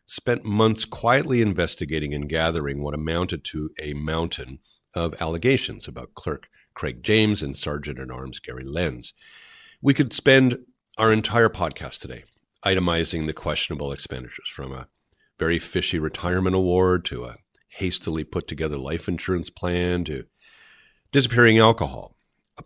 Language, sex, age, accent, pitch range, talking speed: English, male, 50-69, American, 75-95 Hz, 130 wpm